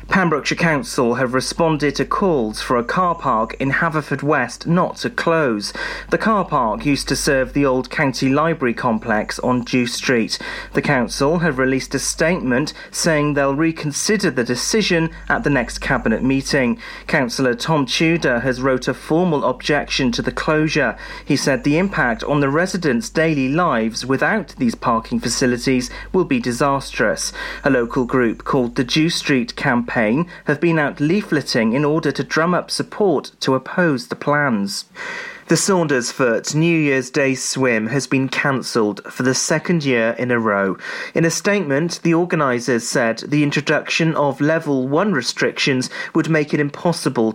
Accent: British